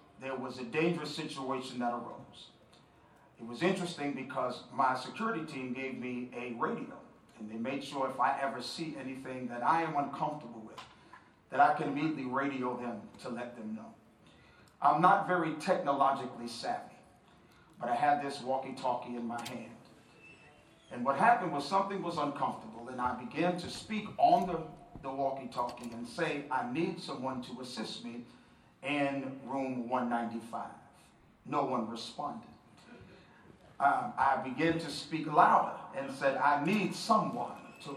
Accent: American